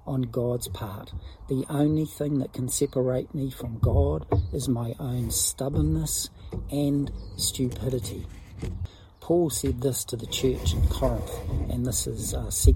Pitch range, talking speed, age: 100-135 Hz, 140 wpm, 50-69